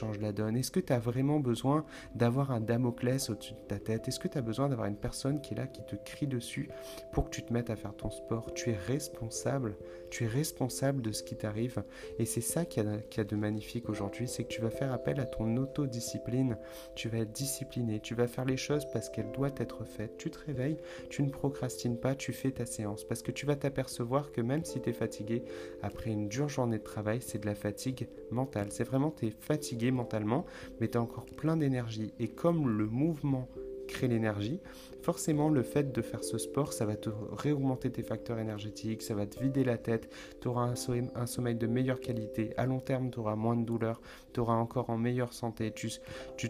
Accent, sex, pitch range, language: French, male, 110-130 Hz, French